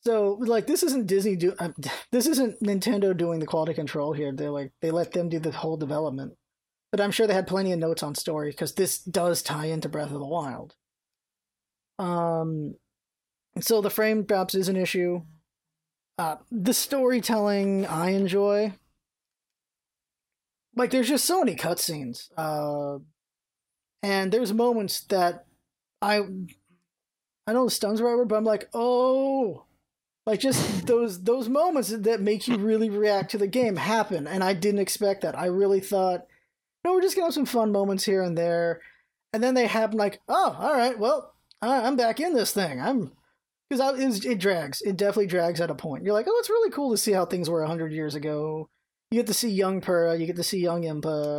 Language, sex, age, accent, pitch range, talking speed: English, male, 20-39, American, 165-225 Hz, 190 wpm